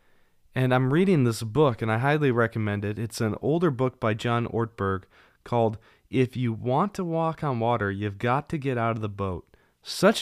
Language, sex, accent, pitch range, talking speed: English, male, American, 110-140 Hz, 200 wpm